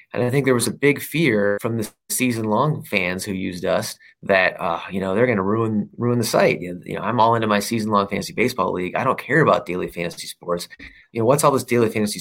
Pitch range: 100-120 Hz